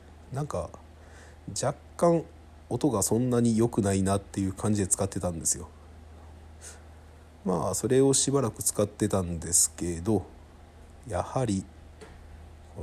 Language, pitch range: Japanese, 80-100 Hz